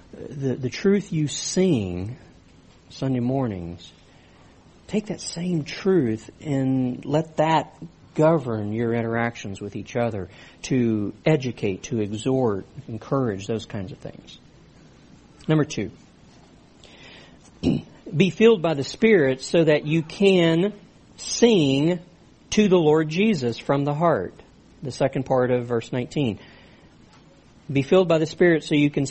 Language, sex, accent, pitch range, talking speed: English, male, American, 125-165 Hz, 130 wpm